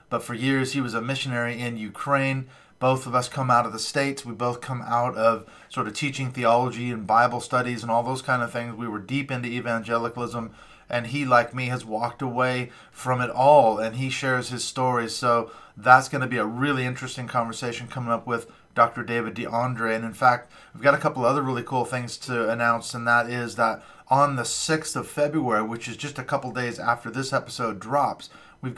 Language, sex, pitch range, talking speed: English, male, 115-130 Hz, 215 wpm